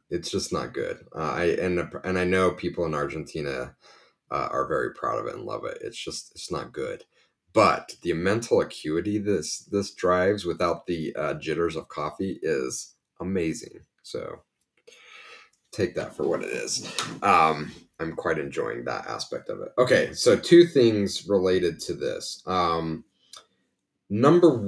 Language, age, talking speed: English, 30-49, 160 wpm